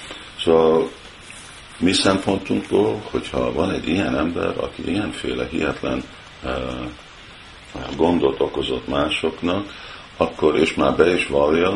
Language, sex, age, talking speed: Hungarian, male, 50-69, 110 wpm